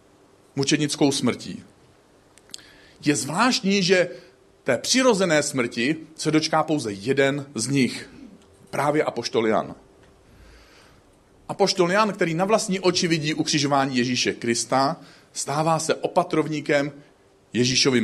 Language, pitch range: Czech, 130-175 Hz